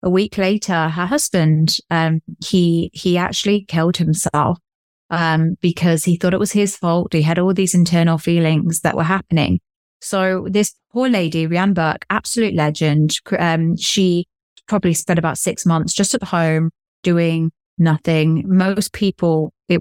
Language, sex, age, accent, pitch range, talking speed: English, female, 20-39, British, 160-190 Hz, 155 wpm